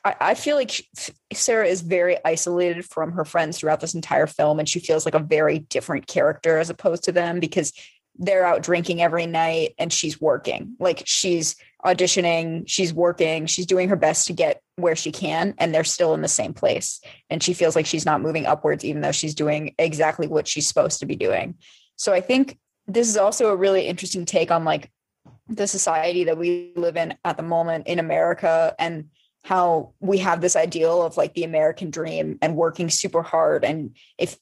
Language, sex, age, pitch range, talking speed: English, female, 20-39, 160-185 Hz, 200 wpm